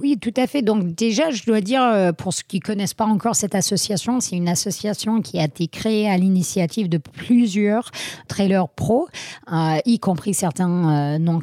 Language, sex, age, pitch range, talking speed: French, female, 40-59, 180-245 Hz, 195 wpm